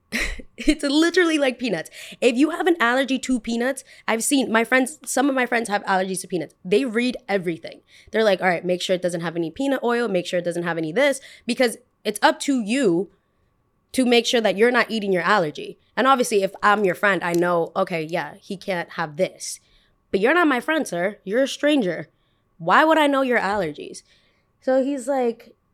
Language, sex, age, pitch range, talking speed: English, female, 20-39, 205-295 Hz, 210 wpm